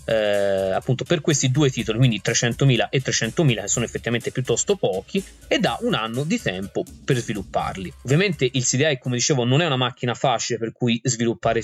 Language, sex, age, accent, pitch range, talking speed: Italian, male, 20-39, native, 115-135 Hz, 180 wpm